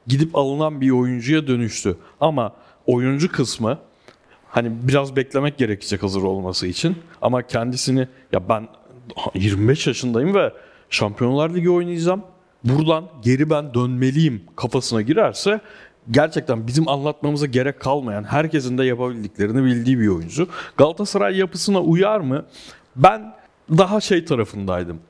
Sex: male